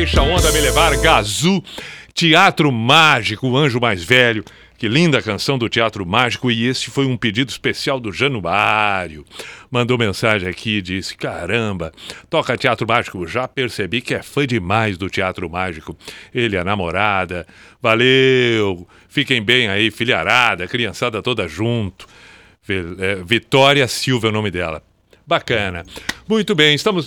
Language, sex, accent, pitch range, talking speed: Portuguese, male, Brazilian, 100-135 Hz, 135 wpm